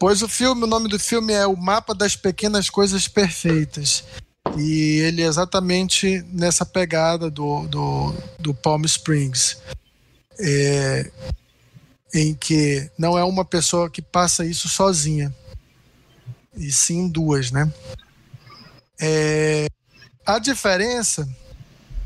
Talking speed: 115 wpm